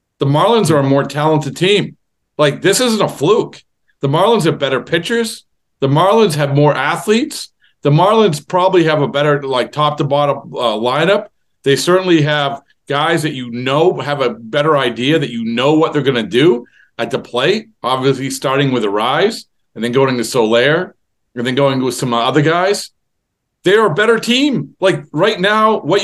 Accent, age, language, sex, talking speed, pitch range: American, 40-59, English, male, 180 wpm, 150-200 Hz